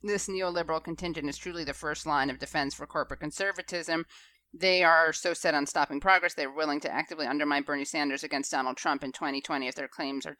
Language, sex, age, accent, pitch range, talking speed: English, female, 30-49, American, 155-180 Hz, 215 wpm